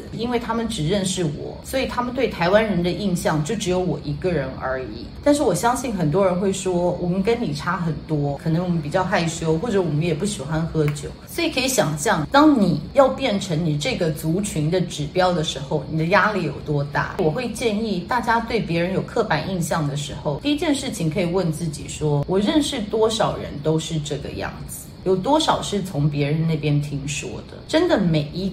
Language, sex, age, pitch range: Chinese, female, 30-49, 155-210 Hz